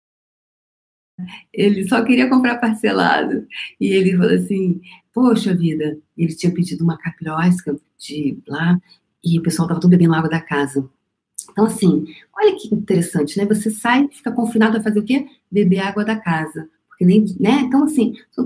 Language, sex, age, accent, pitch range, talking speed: Portuguese, female, 40-59, Brazilian, 165-220 Hz, 165 wpm